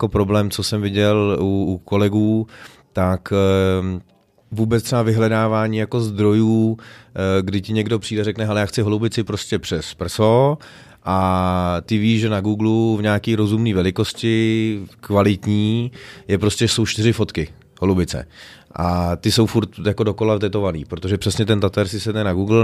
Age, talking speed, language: 30-49, 155 wpm, Czech